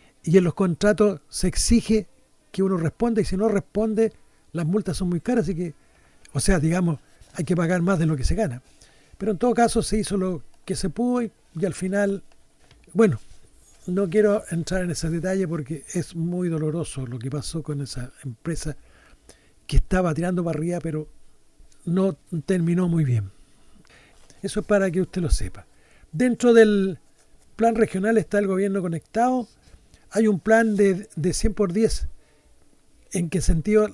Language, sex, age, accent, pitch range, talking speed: Spanish, male, 60-79, Argentinian, 165-210 Hz, 175 wpm